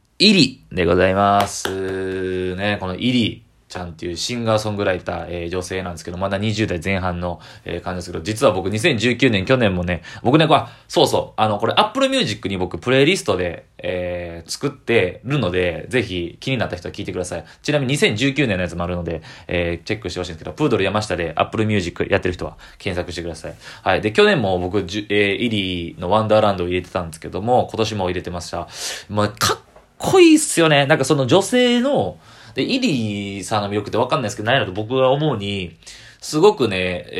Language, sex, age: Japanese, male, 20-39